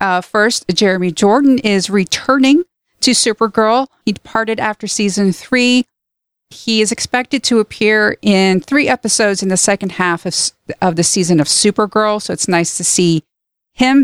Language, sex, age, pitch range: English, female, 40-59, 185-225 Hz